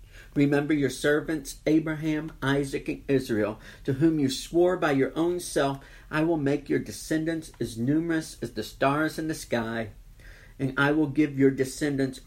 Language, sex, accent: English, male, American